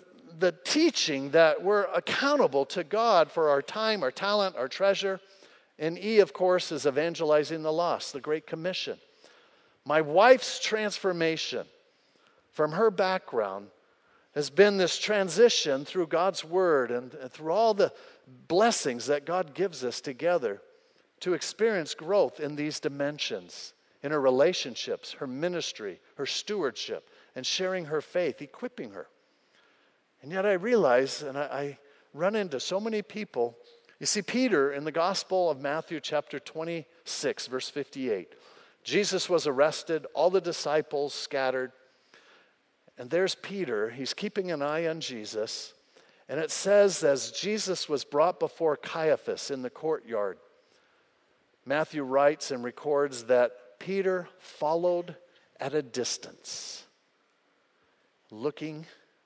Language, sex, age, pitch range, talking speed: English, male, 50-69, 145-210 Hz, 135 wpm